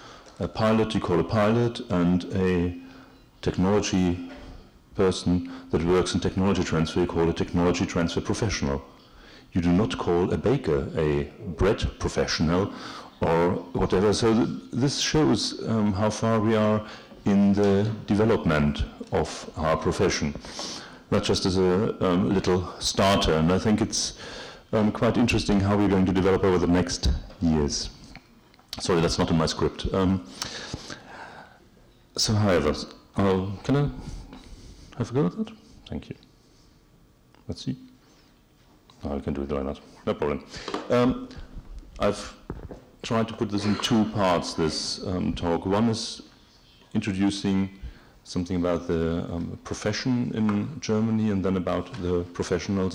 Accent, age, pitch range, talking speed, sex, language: German, 40-59, 85-105 Hz, 140 wpm, male, English